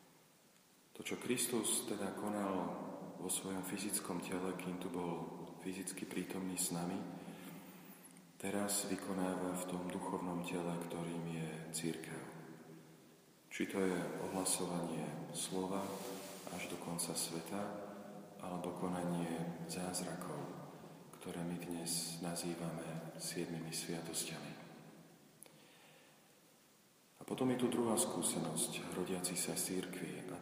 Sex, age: male, 40-59